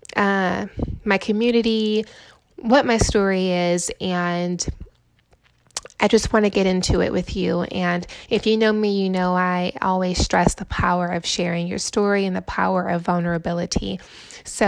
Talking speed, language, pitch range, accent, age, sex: 160 wpm, English, 180-215 Hz, American, 20-39, female